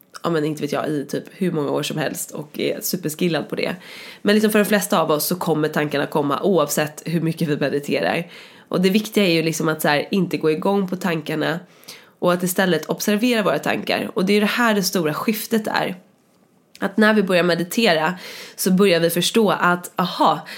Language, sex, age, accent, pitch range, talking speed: English, female, 20-39, Swedish, 165-205 Hz, 220 wpm